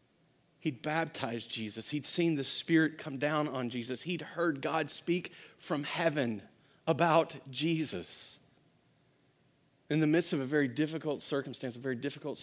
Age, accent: 40-59, American